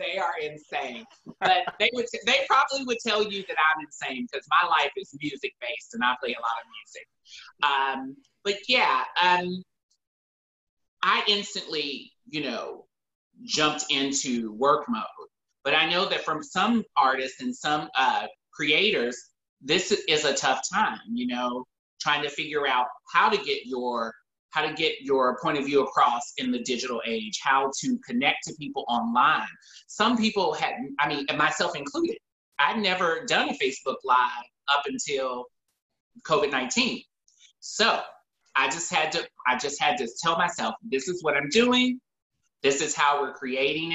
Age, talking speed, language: 30-49, 160 wpm, English